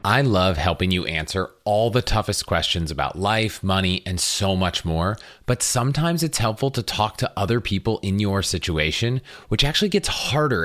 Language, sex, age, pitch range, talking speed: English, male, 30-49, 90-120 Hz, 180 wpm